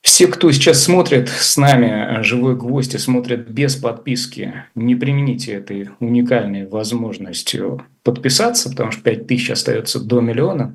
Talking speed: 135 wpm